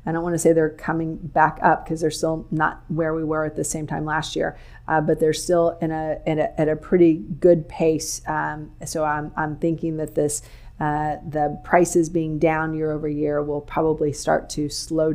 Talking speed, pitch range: 220 wpm, 155-170 Hz